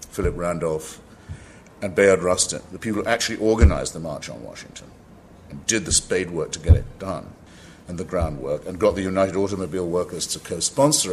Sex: male